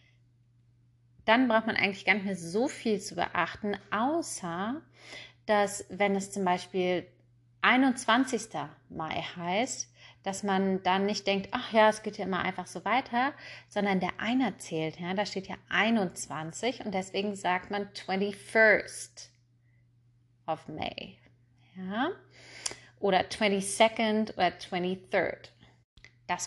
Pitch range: 160-210 Hz